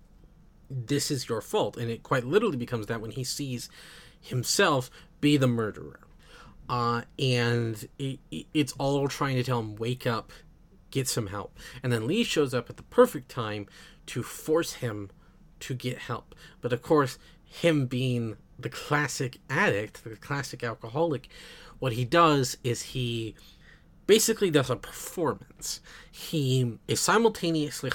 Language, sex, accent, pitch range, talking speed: English, male, American, 120-150 Hz, 145 wpm